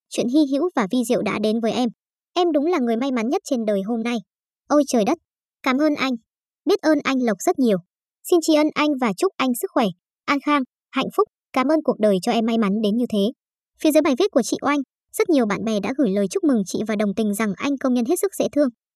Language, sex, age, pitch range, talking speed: Vietnamese, male, 20-39, 225-300 Hz, 270 wpm